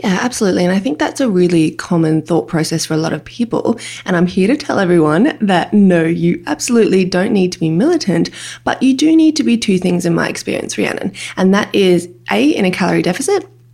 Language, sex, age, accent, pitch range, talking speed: English, female, 20-39, Australian, 175-230 Hz, 225 wpm